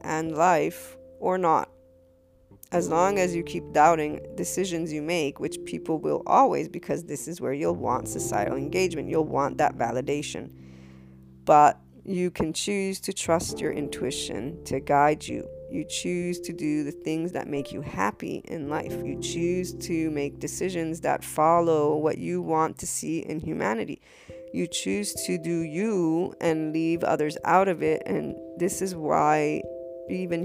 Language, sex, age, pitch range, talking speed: English, female, 20-39, 140-180 Hz, 160 wpm